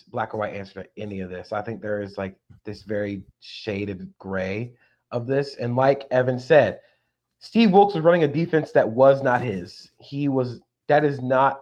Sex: male